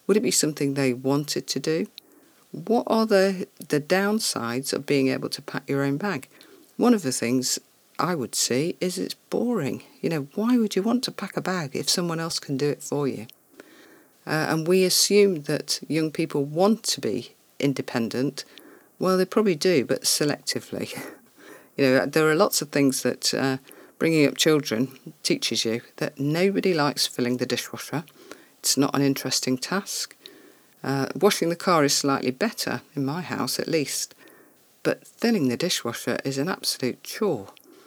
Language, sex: English, female